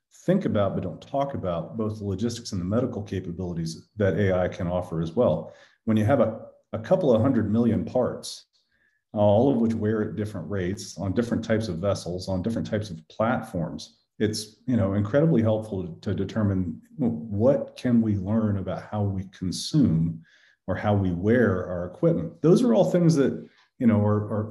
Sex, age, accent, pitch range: male, 40-59, American, 90-115 Hz